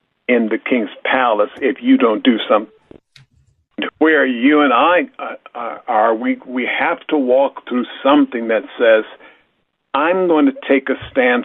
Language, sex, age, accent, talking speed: English, male, 50-69, American, 145 wpm